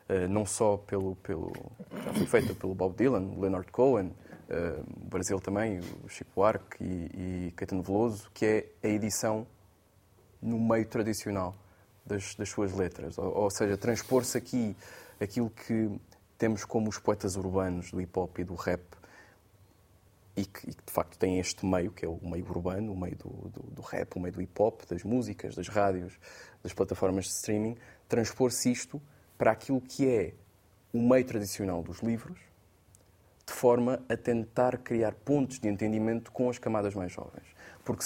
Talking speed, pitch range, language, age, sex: 170 wpm, 95-120 Hz, Portuguese, 20-39, male